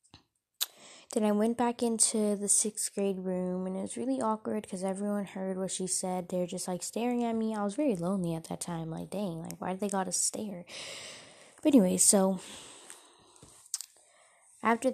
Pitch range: 180-225 Hz